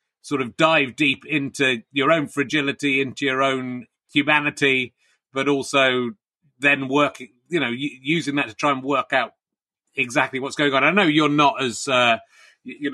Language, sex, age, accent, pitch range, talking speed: English, male, 30-49, British, 125-150 Hz, 165 wpm